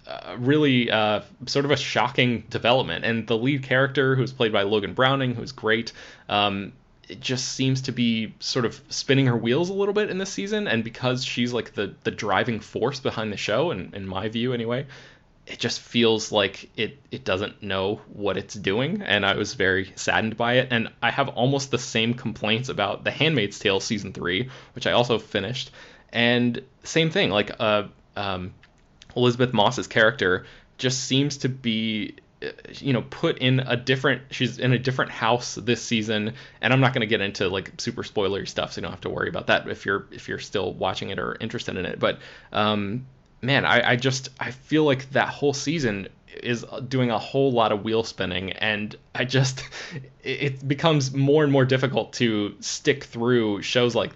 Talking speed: 195 wpm